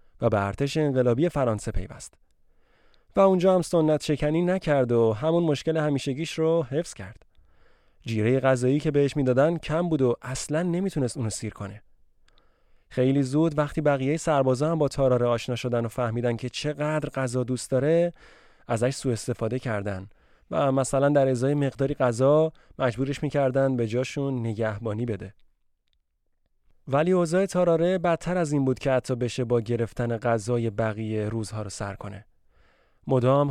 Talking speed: 150 wpm